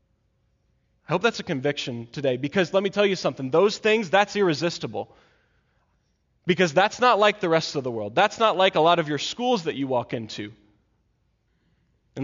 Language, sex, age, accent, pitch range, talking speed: English, male, 20-39, American, 145-195 Hz, 185 wpm